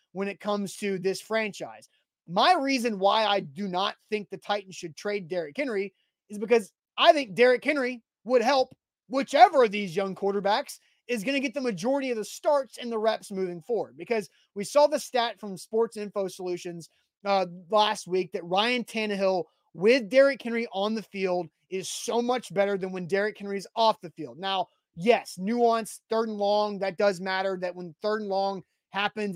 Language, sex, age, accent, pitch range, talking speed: English, male, 30-49, American, 190-230 Hz, 190 wpm